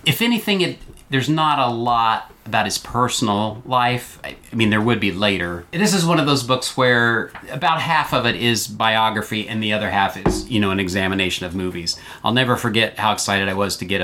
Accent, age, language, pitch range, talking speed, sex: American, 40-59, English, 100-125 Hz, 215 wpm, male